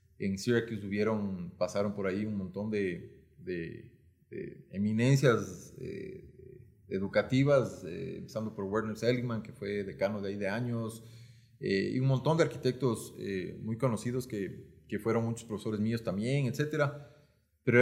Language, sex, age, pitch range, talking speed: Spanish, male, 30-49, 100-125 Hz, 150 wpm